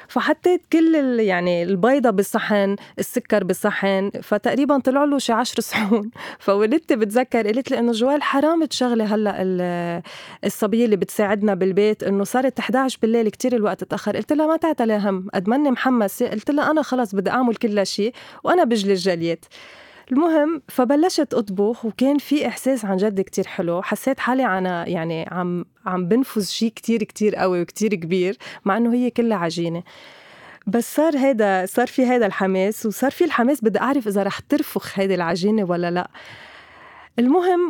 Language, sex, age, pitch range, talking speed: Arabic, female, 20-39, 195-255 Hz, 160 wpm